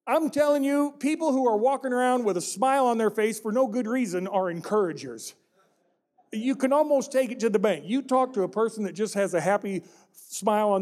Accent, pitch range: American, 175-230 Hz